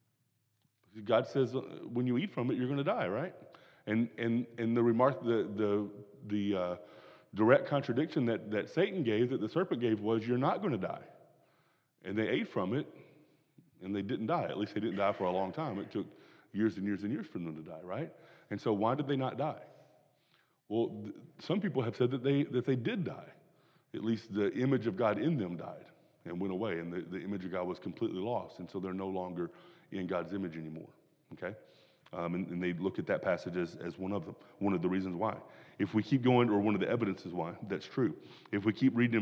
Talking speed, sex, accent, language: 230 wpm, male, American, English